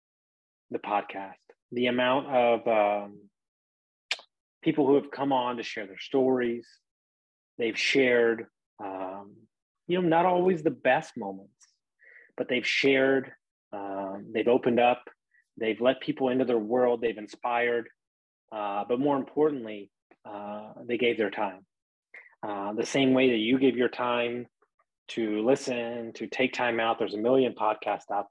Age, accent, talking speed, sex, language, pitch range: 30-49, American, 145 wpm, male, English, 100-130 Hz